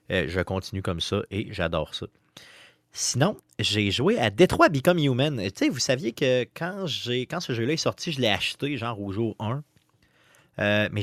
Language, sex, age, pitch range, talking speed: French, male, 30-49, 100-140 Hz, 190 wpm